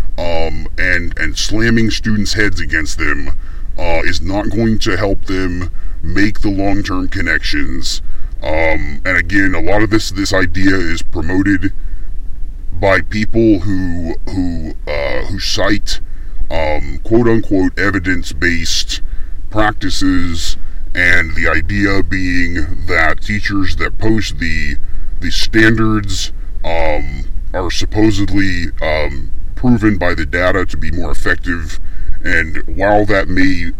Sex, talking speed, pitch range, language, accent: female, 120 wpm, 80-95 Hz, English, American